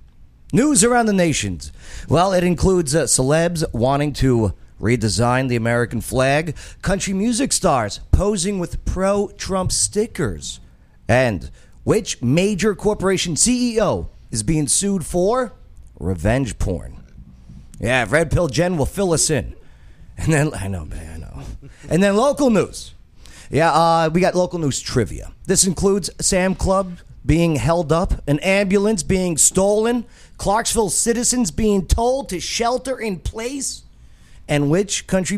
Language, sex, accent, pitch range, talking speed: English, male, American, 130-195 Hz, 135 wpm